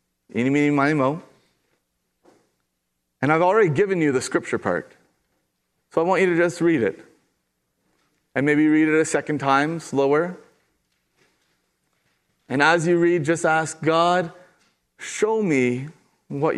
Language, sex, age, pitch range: English, male, 30-49, 115-160 Hz